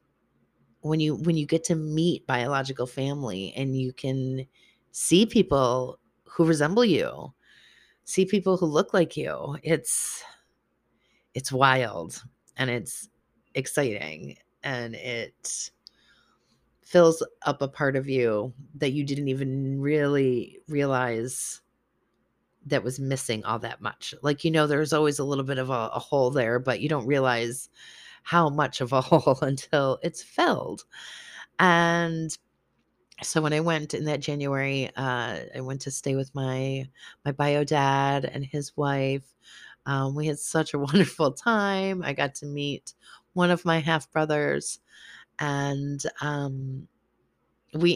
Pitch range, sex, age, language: 130-155 Hz, female, 30-49, English